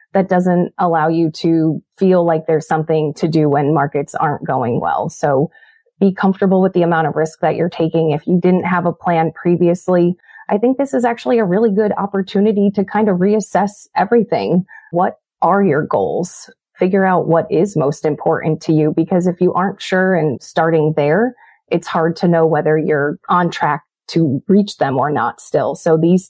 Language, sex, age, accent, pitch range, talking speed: English, female, 30-49, American, 155-185 Hz, 190 wpm